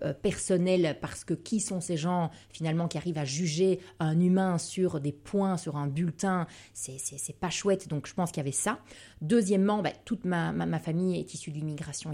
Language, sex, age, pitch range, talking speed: French, female, 30-49, 150-185 Hz, 210 wpm